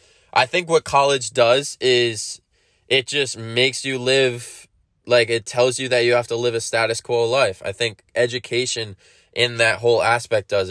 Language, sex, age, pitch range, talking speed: English, male, 20-39, 110-125 Hz, 180 wpm